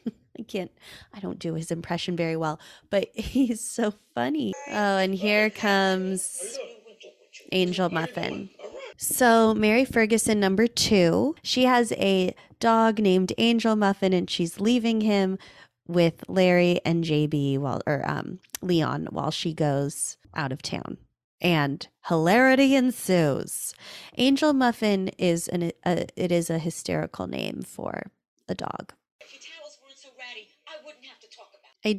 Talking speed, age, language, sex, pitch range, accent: 125 wpm, 20-39, English, female, 165-225 Hz, American